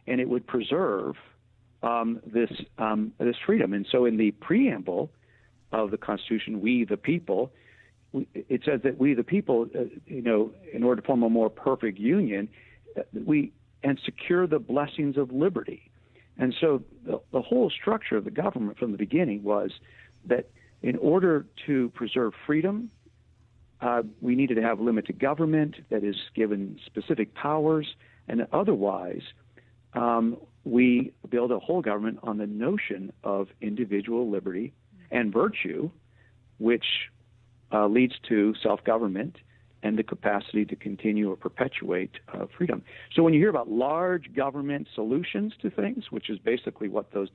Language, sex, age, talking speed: English, male, 50-69, 150 wpm